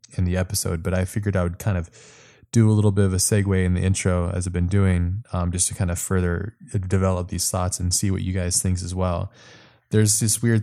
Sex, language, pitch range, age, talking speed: male, English, 90-105 Hz, 20-39, 250 wpm